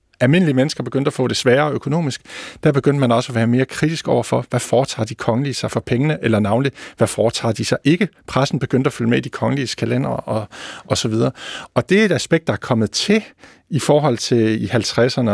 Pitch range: 115-140 Hz